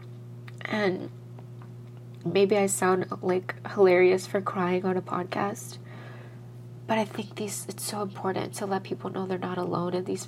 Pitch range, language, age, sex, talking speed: 120-205 Hz, English, 20-39, female, 160 wpm